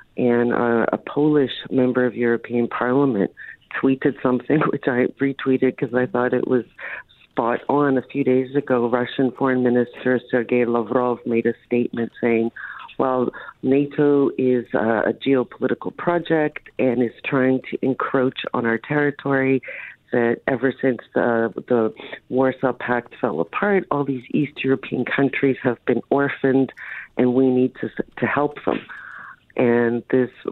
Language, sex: English, female